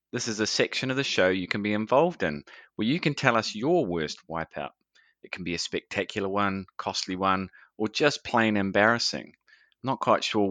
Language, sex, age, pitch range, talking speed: English, male, 30-49, 85-115 Hz, 200 wpm